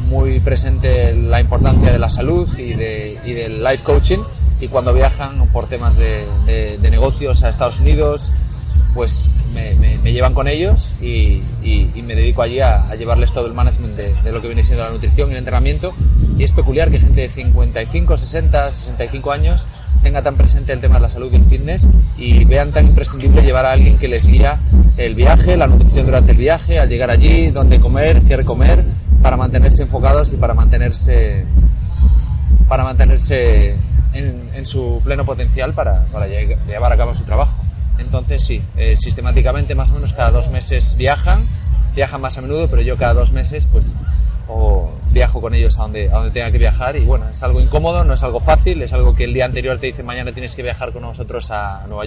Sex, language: male, Spanish